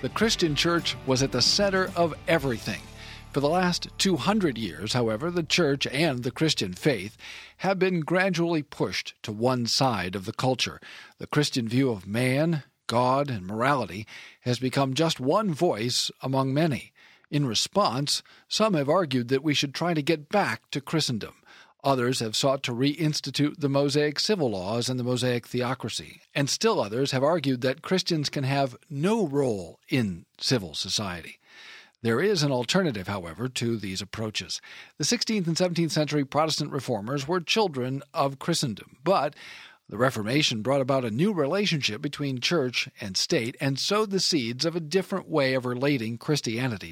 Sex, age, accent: male, 50-69, American